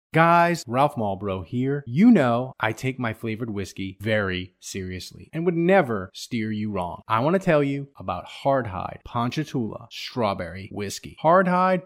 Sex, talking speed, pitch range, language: male, 150 wpm, 110-175 Hz, English